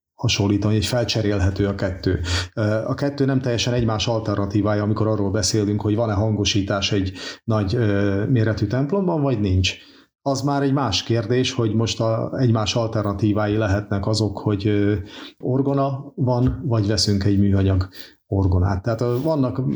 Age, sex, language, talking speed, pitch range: 40-59, male, Hungarian, 135 wpm, 105-125 Hz